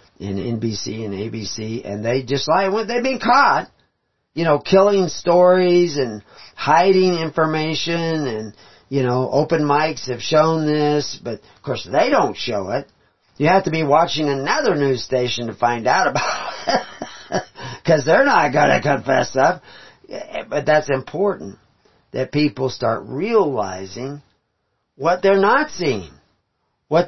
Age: 50-69